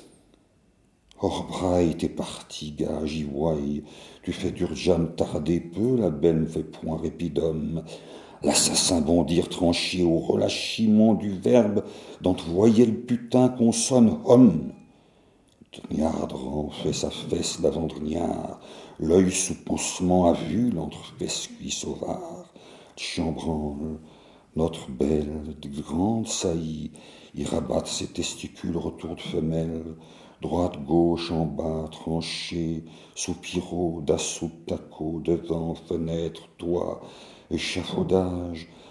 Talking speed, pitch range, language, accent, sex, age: 105 wpm, 80-95 Hz, English, French, male, 60-79